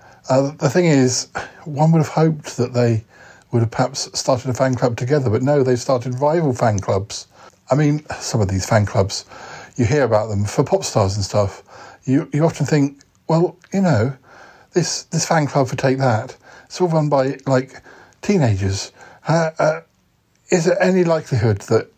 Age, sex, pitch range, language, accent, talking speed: 50-69, male, 110-150 Hz, English, British, 185 wpm